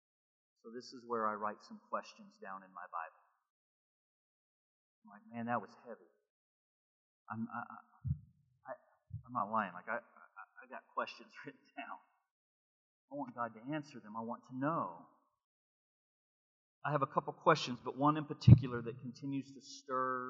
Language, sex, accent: English, male, American